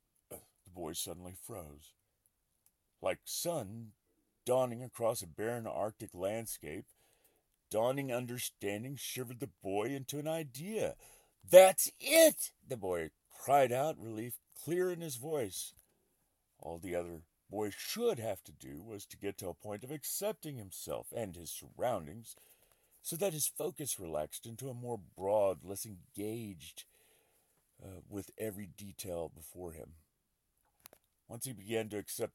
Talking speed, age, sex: 135 wpm, 40-59, male